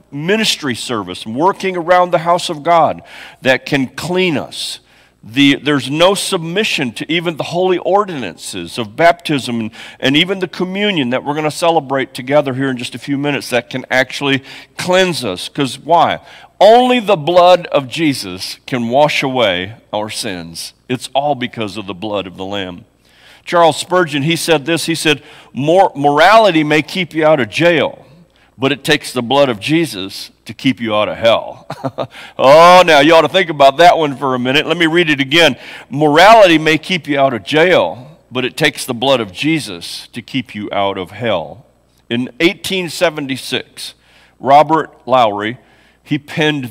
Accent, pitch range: American, 125-165 Hz